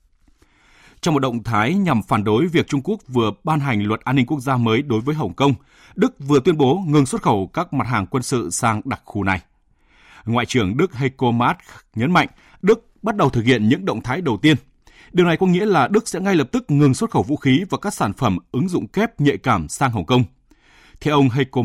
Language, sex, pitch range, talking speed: Vietnamese, male, 115-165 Hz, 240 wpm